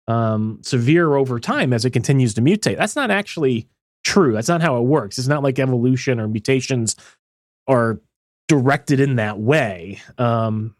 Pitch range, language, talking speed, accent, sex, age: 110-160 Hz, English, 165 wpm, American, male, 30-49